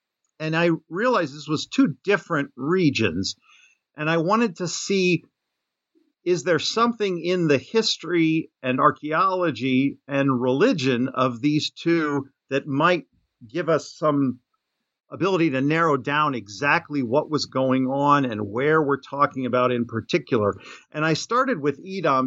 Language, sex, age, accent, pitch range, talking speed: English, male, 50-69, American, 135-175 Hz, 140 wpm